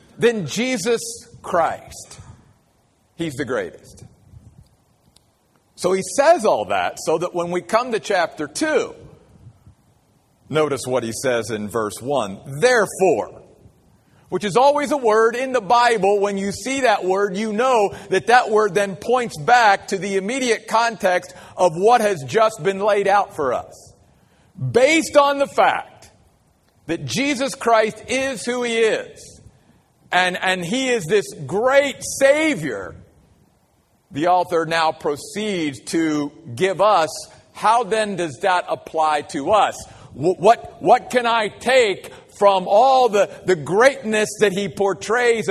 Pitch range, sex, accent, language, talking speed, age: 180-240 Hz, male, American, English, 140 wpm, 50-69